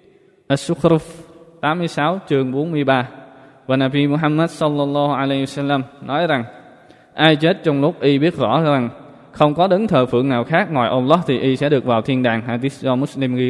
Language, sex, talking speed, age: Vietnamese, male, 180 wpm, 20-39